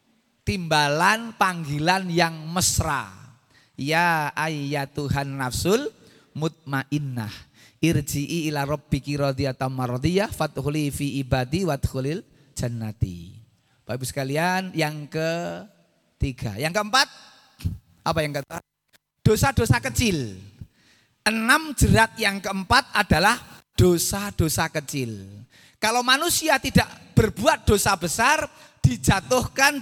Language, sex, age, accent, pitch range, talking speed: Indonesian, male, 30-49, native, 125-185 Hz, 90 wpm